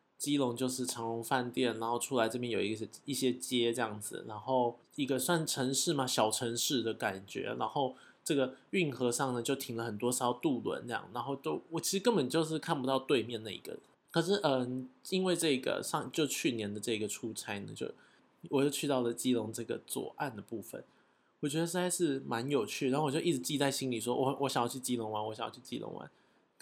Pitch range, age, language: 115-140 Hz, 20-39, Chinese